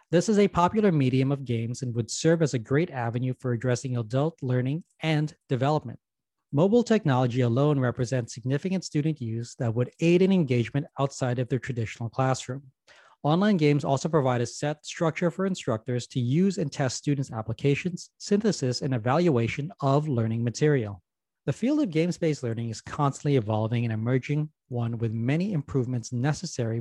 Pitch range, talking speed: 125-160 Hz, 165 wpm